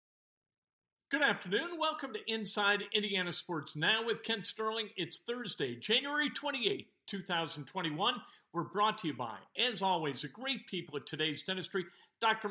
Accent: American